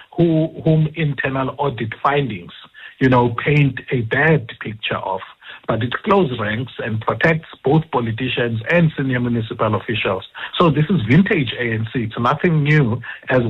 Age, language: 60-79, English